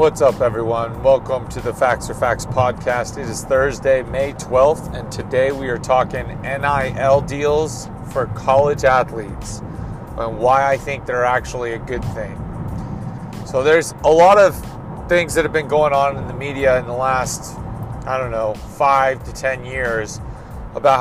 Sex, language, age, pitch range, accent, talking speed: male, English, 30-49, 120-145 Hz, American, 170 wpm